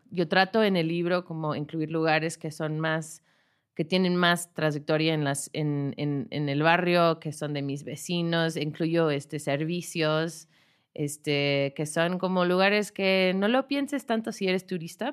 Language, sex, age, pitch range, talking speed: Spanish, female, 20-39, 155-185 Hz, 170 wpm